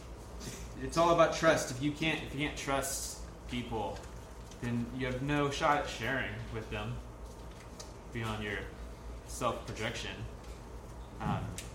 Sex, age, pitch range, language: male, 20-39, 105-155 Hz, English